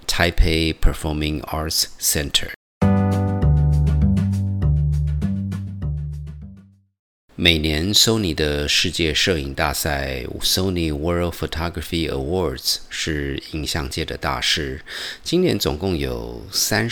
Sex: male